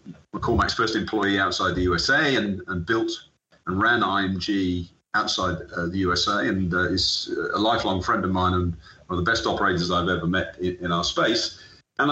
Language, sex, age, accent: English, male, 40-59, British